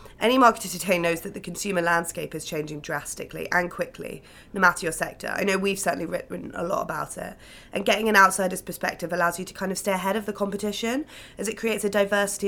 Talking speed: 220 wpm